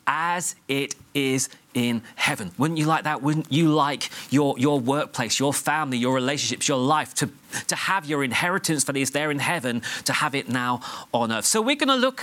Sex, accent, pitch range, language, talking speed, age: male, British, 140-190 Hz, English, 200 wpm, 30-49